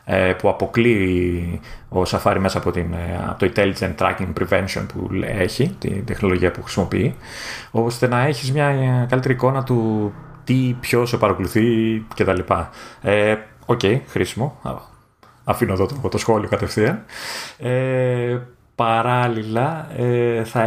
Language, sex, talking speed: Greek, male, 115 wpm